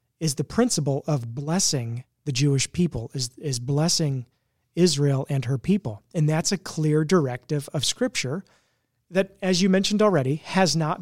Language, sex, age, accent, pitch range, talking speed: English, male, 40-59, American, 135-180 Hz, 160 wpm